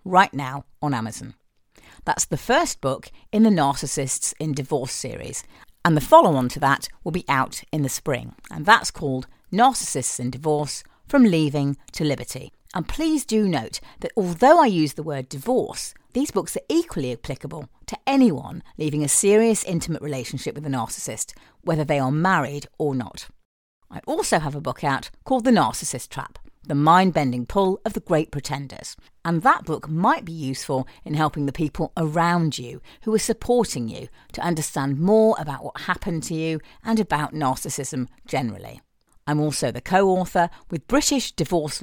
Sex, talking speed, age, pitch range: female, 170 wpm, 50-69, 140-185 Hz